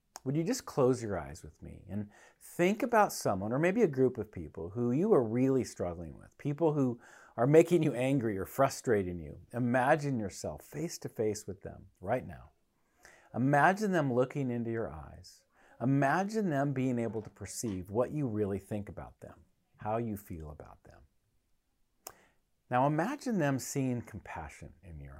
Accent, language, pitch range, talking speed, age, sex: American, English, 95-140 Hz, 165 wpm, 50-69, male